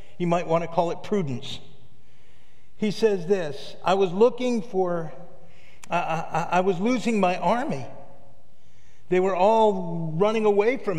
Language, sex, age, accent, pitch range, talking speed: English, male, 50-69, American, 145-205 Hz, 140 wpm